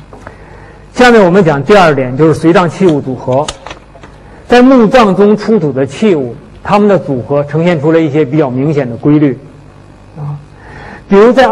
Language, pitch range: Chinese, 140-185 Hz